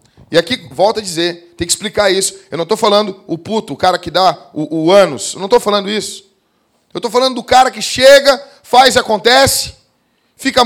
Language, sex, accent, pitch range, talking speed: Portuguese, male, Brazilian, 165-260 Hz, 205 wpm